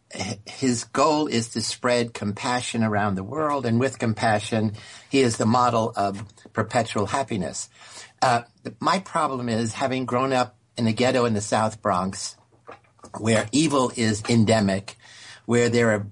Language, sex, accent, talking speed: English, male, American, 150 wpm